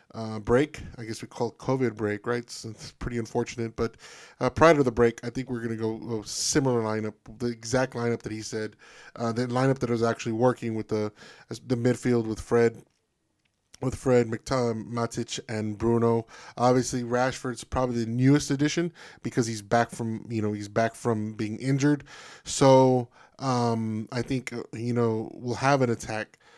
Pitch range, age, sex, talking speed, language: 110-125 Hz, 10-29, male, 180 wpm, English